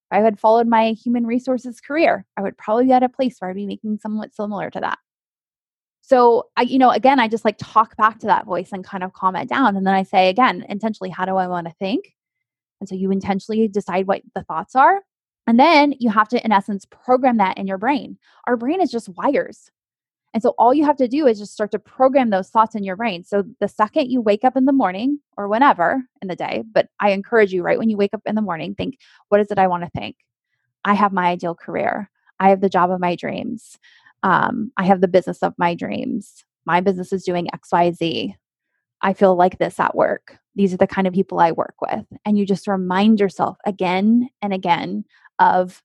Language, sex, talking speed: English, female, 240 wpm